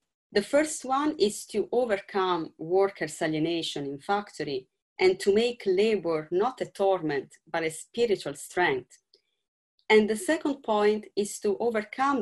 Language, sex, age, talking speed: English, female, 30-49, 140 wpm